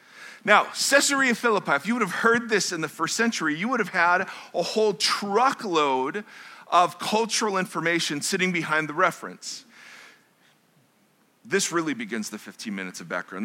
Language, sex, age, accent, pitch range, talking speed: English, male, 40-59, American, 160-225 Hz, 155 wpm